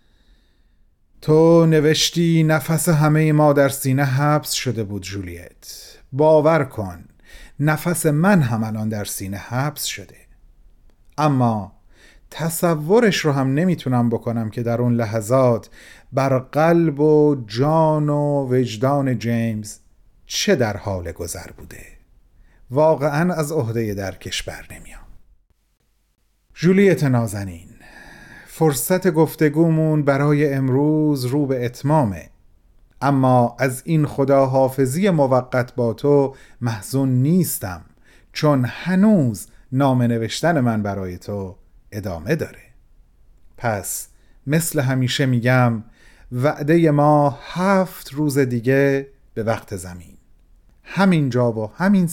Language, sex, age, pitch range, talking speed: Persian, male, 40-59, 115-155 Hz, 105 wpm